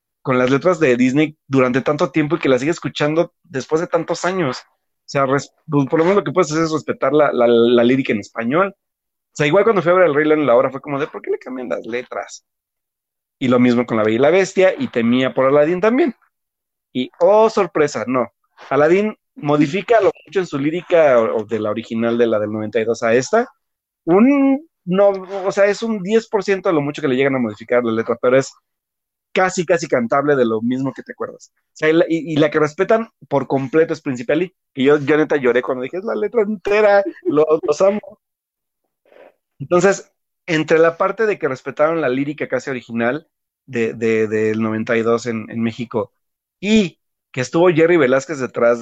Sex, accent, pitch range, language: male, Mexican, 125-180 Hz, Spanish